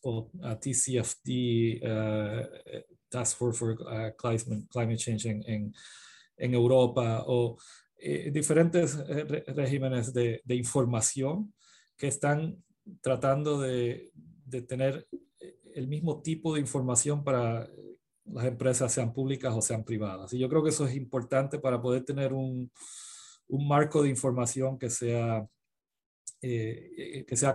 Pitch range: 120-145 Hz